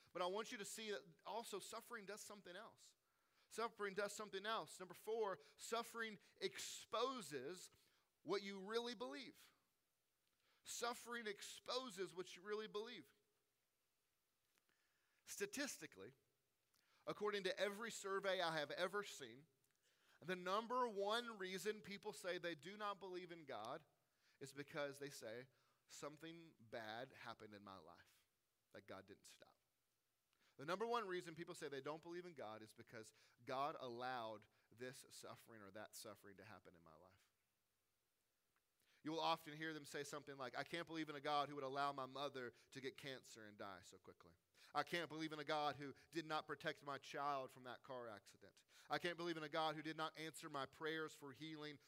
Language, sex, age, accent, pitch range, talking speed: English, male, 30-49, American, 135-200 Hz, 170 wpm